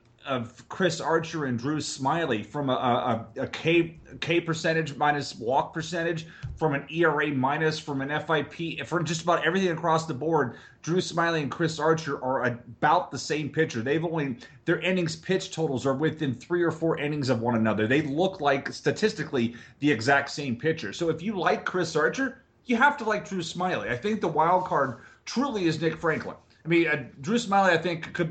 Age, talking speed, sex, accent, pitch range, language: 30-49, 195 wpm, male, American, 130-165 Hz, English